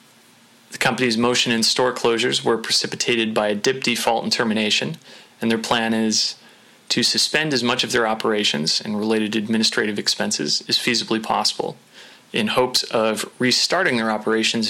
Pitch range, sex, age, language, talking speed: 110-120 Hz, male, 30-49, English, 155 wpm